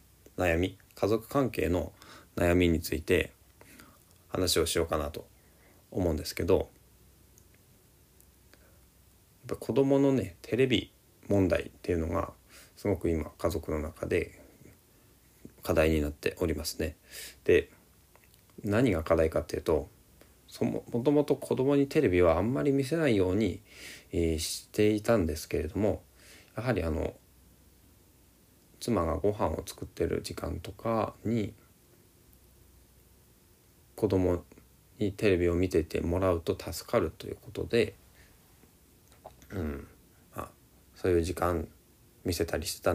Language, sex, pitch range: Japanese, male, 85-110 Hz